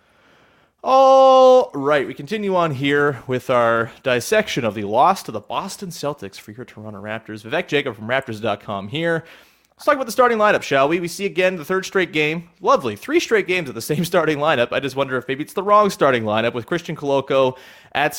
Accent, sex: American, male